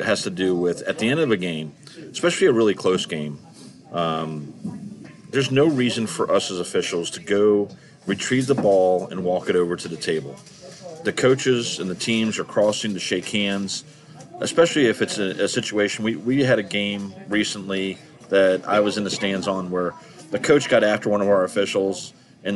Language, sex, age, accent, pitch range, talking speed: English, male, 40-59, American, 95-115 Hz, 195 wpm